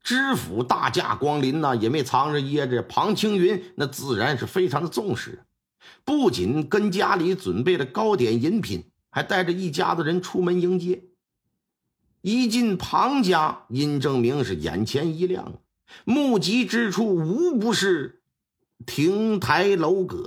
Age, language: 50-69, Chinese